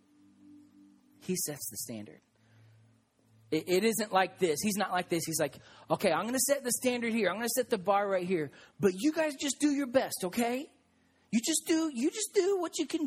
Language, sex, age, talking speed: English, male, 30-49, 220 wpm